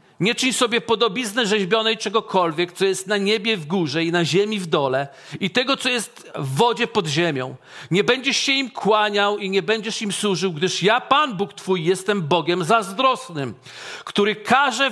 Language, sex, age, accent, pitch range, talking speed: Polish, male, 40-59, native, 185-235 Hz, 180 wpm